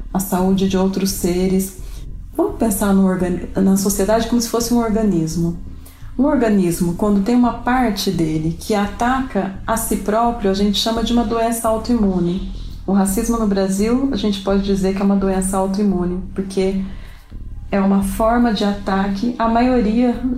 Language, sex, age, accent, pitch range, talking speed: Portuguese, female, 40-59, Brazilian, 185-220 Hz, 165 wpm